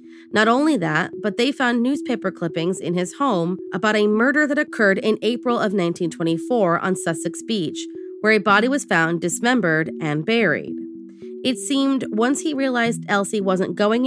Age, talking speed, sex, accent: 30-49, 165 wpm, female, American